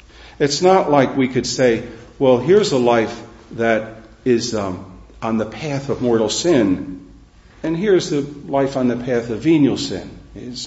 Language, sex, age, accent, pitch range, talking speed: English, male, 50-69, American, 95-130 Hz, 170 wpm